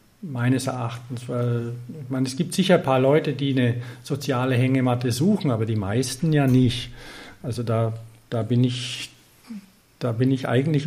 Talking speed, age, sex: 165 wpm, 50-69, male